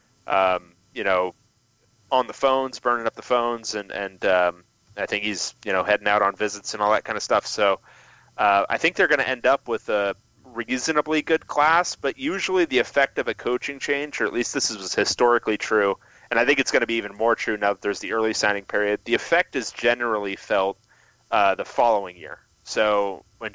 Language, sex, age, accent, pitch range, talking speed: English, male, 30-49, American, 100-125 Hz, 215 wpm